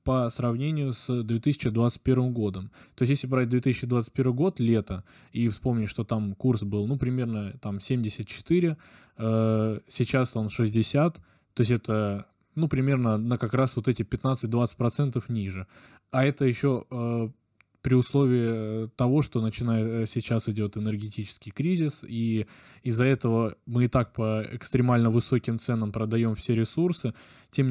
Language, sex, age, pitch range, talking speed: Russian, male, 20-39, 110-130 Hz, 140 wpm